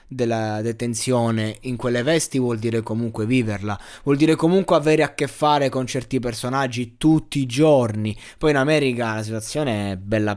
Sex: male